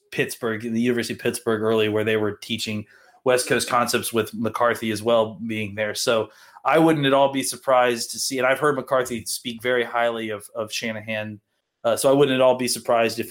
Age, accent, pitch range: 30-49, American, 110-130 Hz